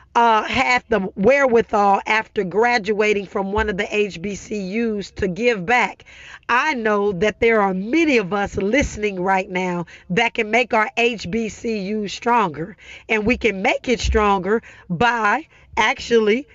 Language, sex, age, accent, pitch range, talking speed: English, female, 40-59, American, 210-265 Hz, 140 wpm